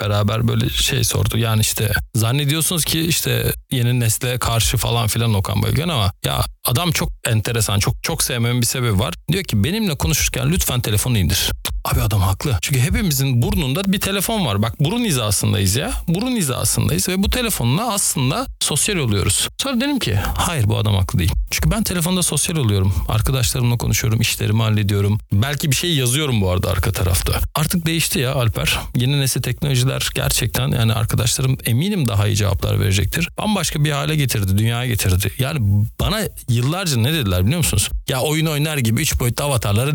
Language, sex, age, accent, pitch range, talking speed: Turkish, male, 40-59, native, 105-140 Hz, 175 wpm